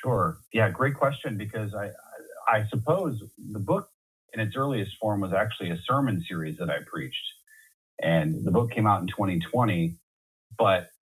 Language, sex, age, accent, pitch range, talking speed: English, male, 30-49, American, 95-120 Hz, 165 wpm